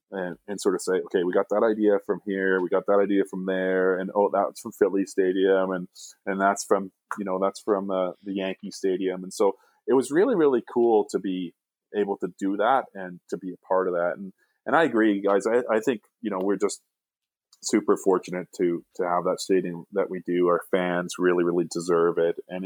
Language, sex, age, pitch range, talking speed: English, male, 30-49, 90-110 Hz, 225 wpm